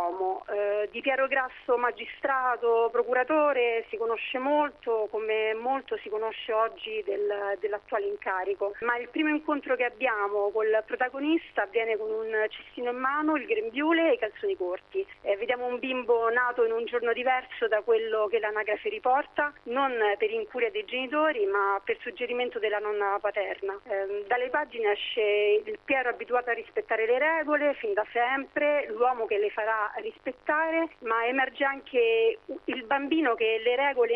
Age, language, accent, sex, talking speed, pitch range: 40-59, Italian, native, female, 155 wpm, 215-295 Hz